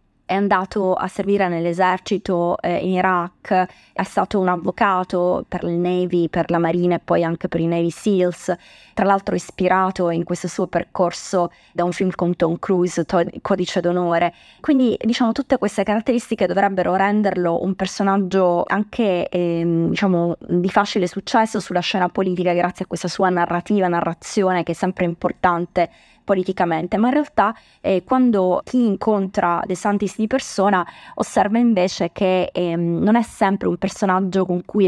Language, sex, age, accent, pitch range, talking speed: Italian, female, 20-39, native, 180-205 Hz, 155 wpm